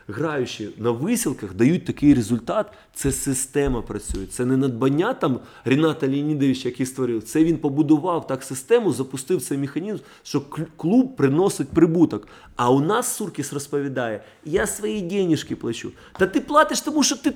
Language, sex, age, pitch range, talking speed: Russian, male, 20-39, 130-180 Hz, 150 wpm